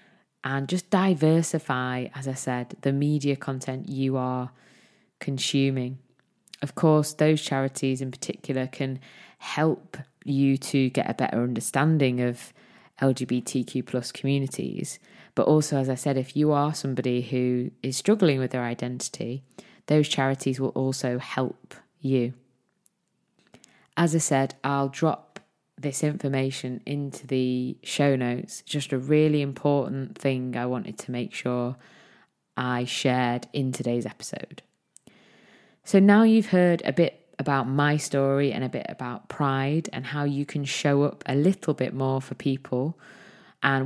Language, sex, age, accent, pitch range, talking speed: English, female, 20-39, British, 130-155 Hz, 140 wpm